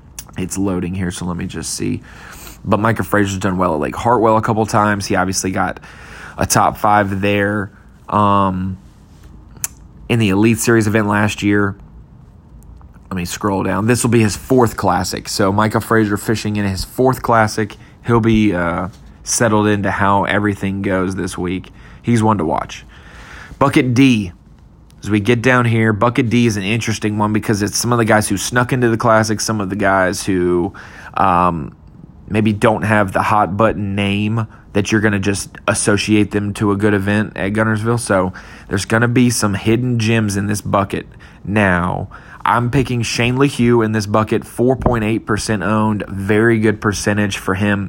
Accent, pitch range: American, 100-110 Hz